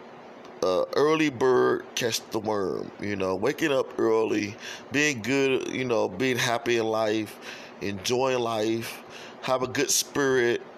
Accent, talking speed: American, 140 wpm